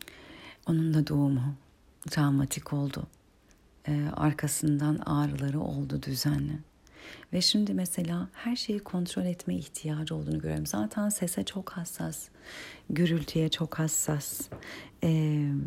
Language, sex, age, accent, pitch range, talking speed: Turkish, female, 40-59, native, 140-175 Hz, 105 wpm